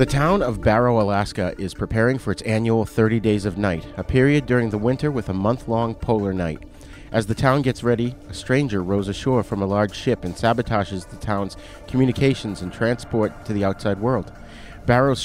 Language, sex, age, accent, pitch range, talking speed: English, male, 40-59, American, 100-130 Hz, 195 wpm